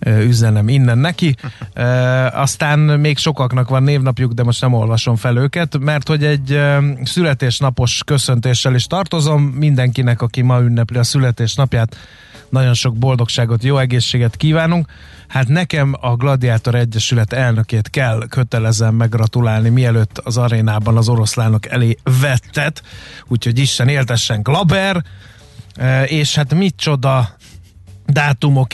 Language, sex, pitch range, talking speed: Hungarian, male, 115-140 Hz, 120 wpm